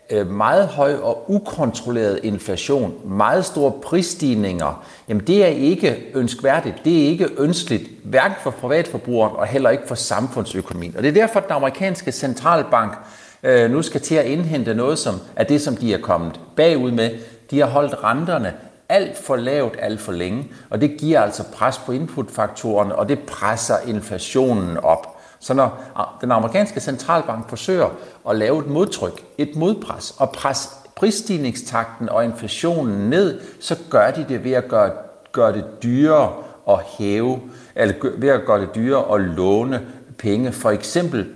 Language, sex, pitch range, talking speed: Danish, male, 110-155 Hz, 160 wpm